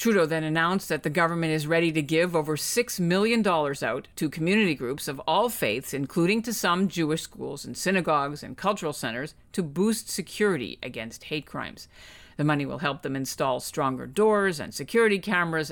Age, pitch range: 50-69, 140-180 Hz